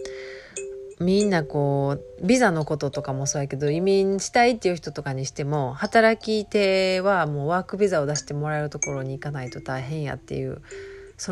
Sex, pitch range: female, 140-205 Hz